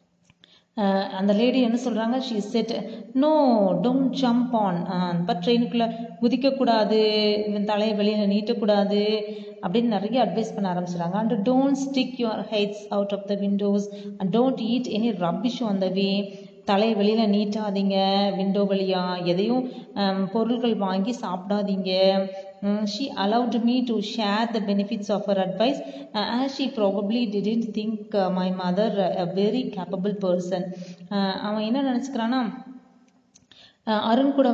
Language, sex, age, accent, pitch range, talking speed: Tamil, female, 20-39, native, 195-230 Hz, 140 wpm